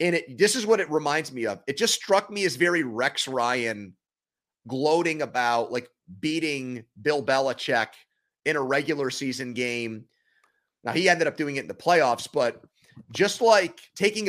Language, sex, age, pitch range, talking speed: English, male, 30-49, 130-175 Hz, 170 wpm